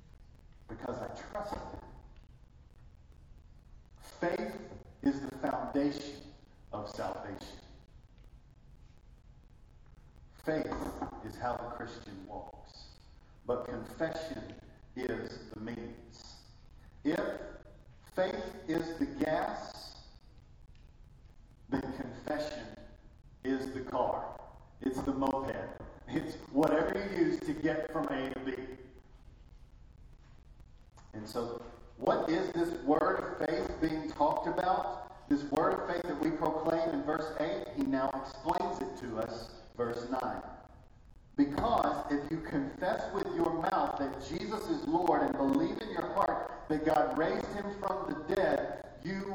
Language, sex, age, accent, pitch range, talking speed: English, male, 50-69, American, 115-175 Hz, 120 wpm